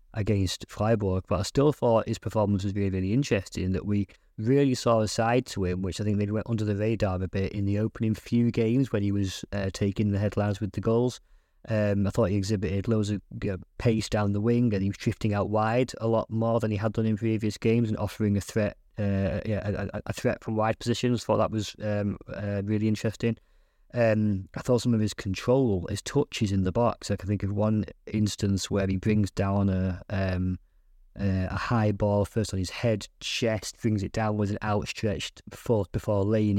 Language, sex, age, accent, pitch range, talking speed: English, male, 20-39, British, 100-115 Hz, 225 wpm